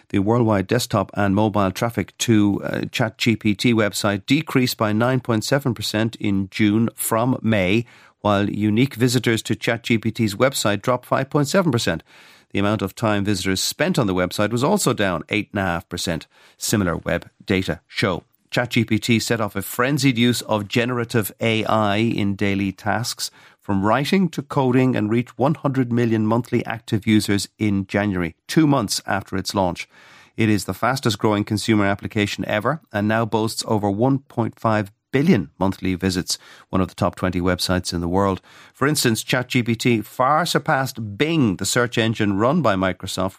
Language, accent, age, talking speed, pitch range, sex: English, Irish, 50-69, 150 wpm, 100-120 Hz, male